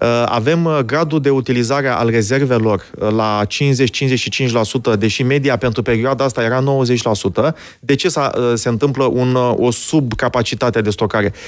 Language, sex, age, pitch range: Romanian, male, 30-49, 115-155 Hz